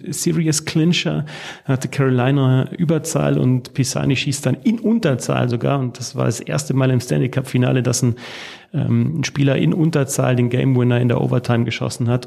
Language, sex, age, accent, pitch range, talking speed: German, male, 30-49, German, 115-135 Hz, 160 wpm